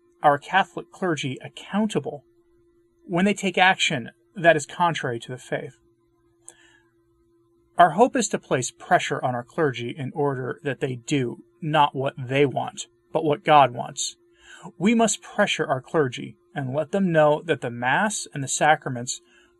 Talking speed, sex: 155 wpm, male